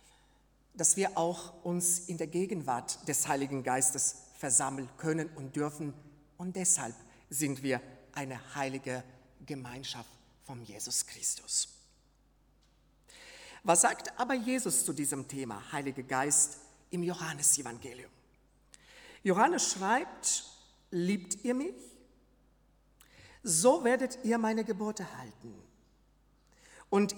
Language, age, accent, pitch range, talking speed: German, 50-69, German, 150-220 Hz, 105 wpm